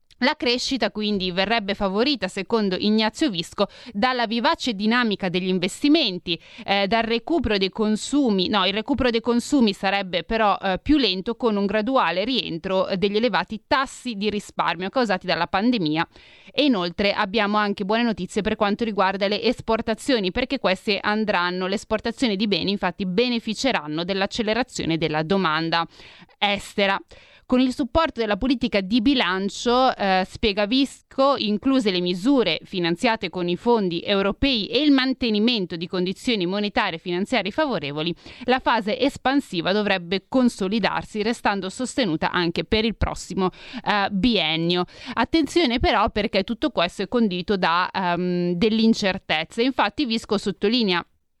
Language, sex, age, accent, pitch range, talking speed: Italian, female, 30-49, native, 190-245 Hz, 140 wpm